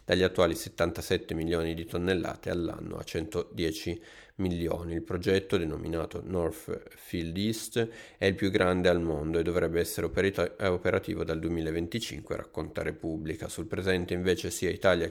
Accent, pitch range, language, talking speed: native, 85-95 Hz, Italian, 140 wpm